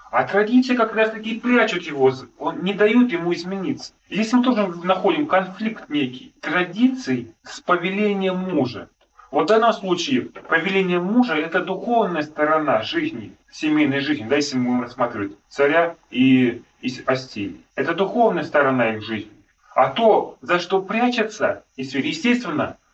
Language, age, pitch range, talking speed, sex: Russian, 30-49, 145-200 Hz, 140 wpm, male